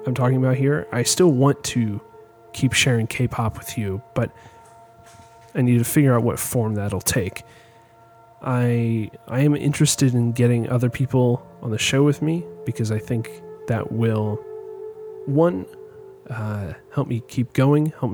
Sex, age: male, 30-49